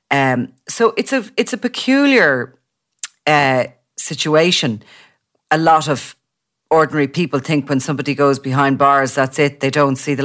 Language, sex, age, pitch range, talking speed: English, female, 40-59, 130-155 Hz, 150 wpm